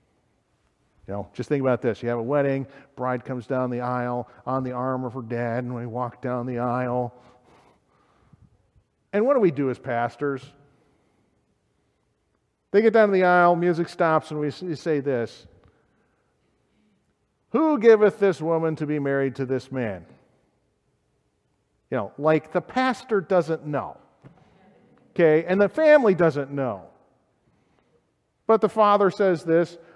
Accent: American